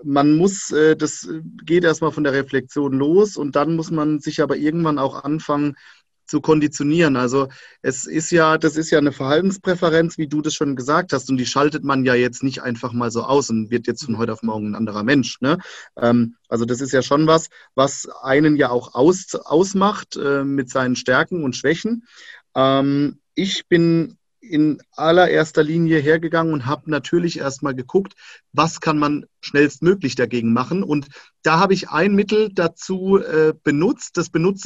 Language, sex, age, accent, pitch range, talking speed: German, male, 30-49, German, 140-170 Hz, 175 wpm